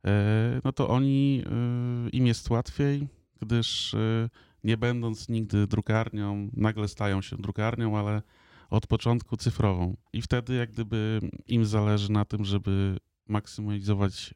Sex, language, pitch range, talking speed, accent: male, Polish, 100-115 Hz, 120 wpm, native